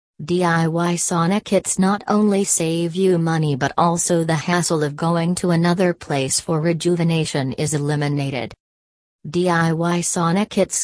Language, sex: English, female